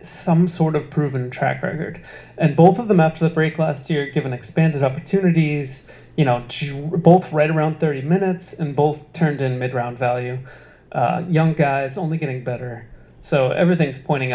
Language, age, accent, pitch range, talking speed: English, 30-49, American, 130-160 Hz, 165 wpm